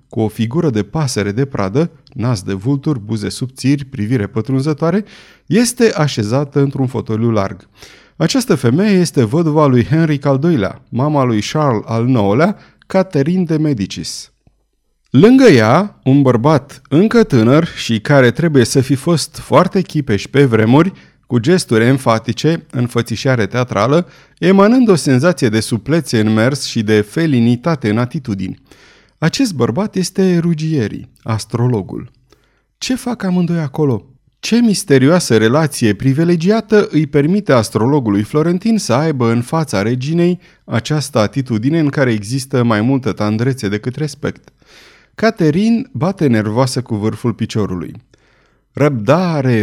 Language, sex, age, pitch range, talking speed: Romanian, male, 30-49, 115-165 Hz, 130 wpm